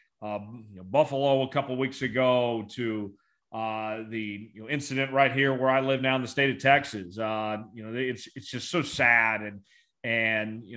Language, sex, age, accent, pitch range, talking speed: English, male, 40-59, American, 115-165 Hz, 210 wpm